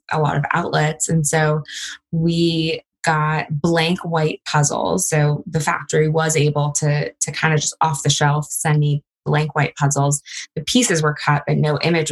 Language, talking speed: English, 180 wpm